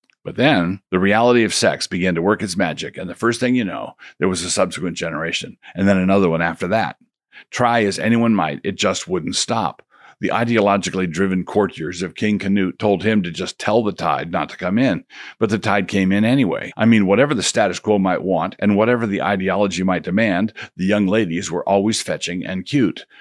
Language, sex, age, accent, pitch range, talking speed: English, male, 50-69, American, 90-105 Hz, 210 wpm